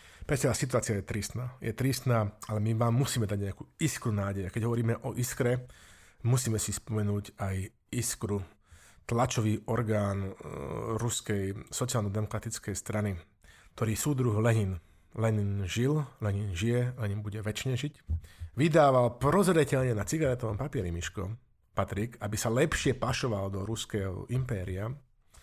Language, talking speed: Slovak, 125 wpm